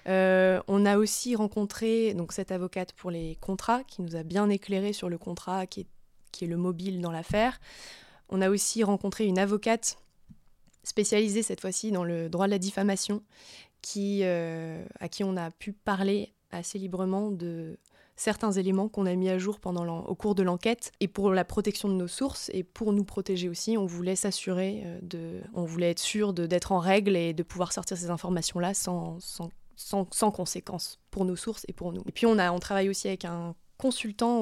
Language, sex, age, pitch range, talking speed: French, female, 20-39, 180-210 Hz, 200 wpm